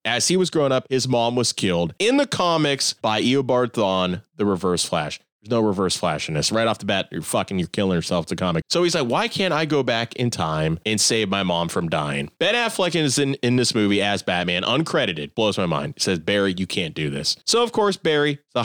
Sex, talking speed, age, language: male, 250 wpm, 30-49, English